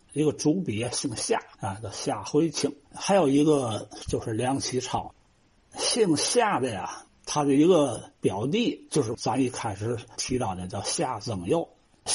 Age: 60-79